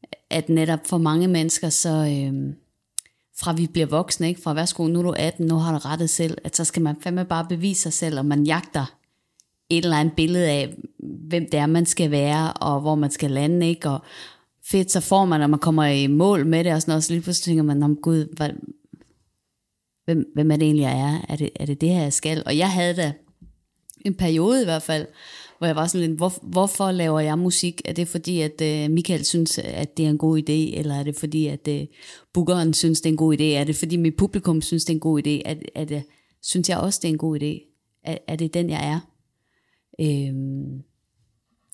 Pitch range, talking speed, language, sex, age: 150-170 Hz, 225 wpm, Danish, female, 30-49